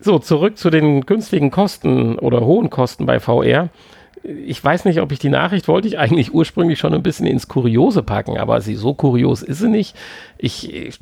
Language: German